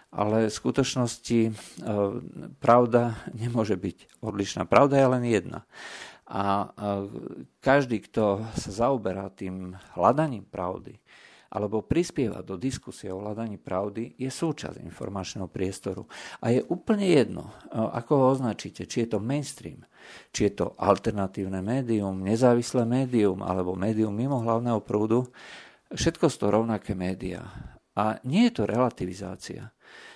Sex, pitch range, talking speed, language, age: male, 100-125 Hz, 125 wpm, Slovak, 50-69